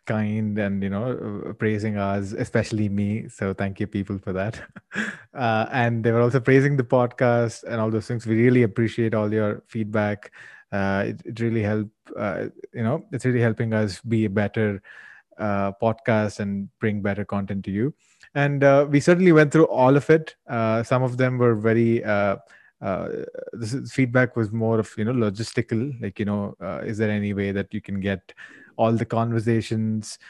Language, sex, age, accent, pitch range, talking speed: English, male, 30-49, Indian, 105-120 Hz, 190 wpm